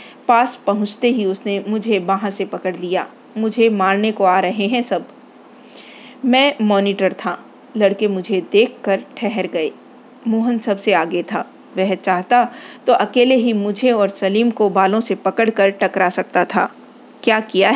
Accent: native